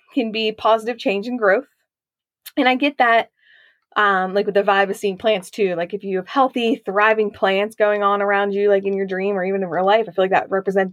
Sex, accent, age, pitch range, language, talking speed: female, American, 20-39, 195-250 Hz, English, 240 wpm